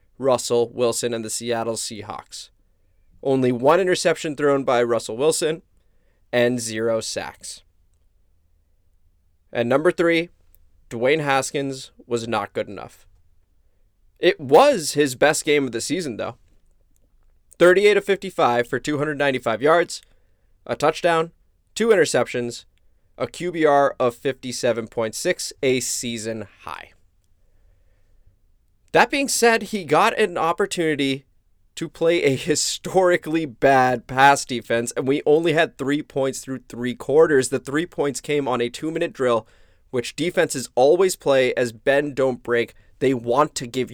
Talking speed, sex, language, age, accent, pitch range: 130 wpm, male, English, 20-39, American, 95-150 Hz